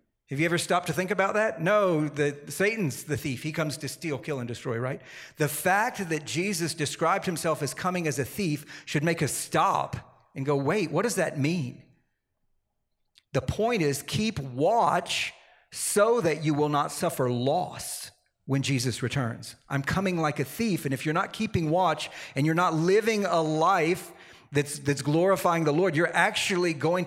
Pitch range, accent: 145-175 Hz, American